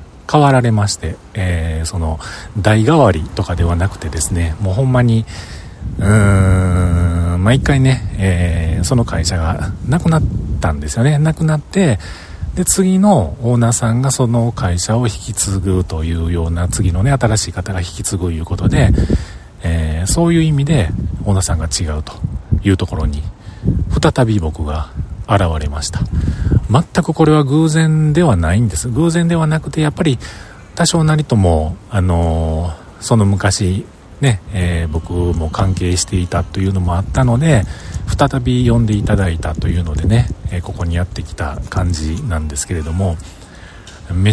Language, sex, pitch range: Japanese, male, 85-120 Hz